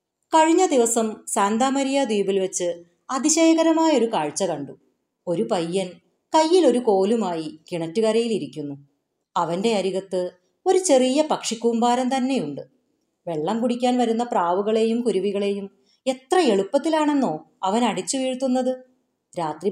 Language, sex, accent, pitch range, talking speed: Malayalam, female, native, 170-245 Hz, 95 wpm